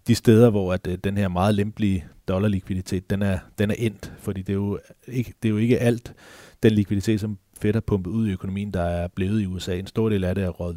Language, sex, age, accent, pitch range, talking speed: Danish, male, 30-49, native, 90-100 Hz, 215 wpm